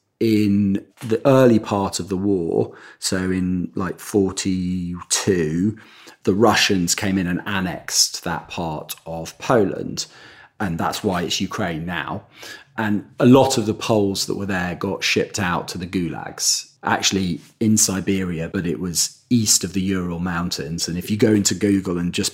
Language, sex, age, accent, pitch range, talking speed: English, male, 40-59, British, 80-100 Hz, 165 wpm